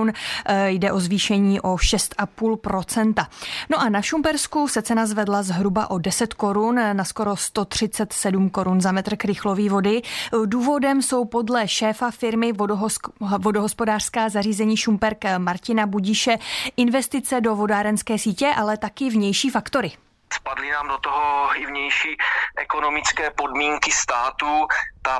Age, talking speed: 20-39, 125 wpm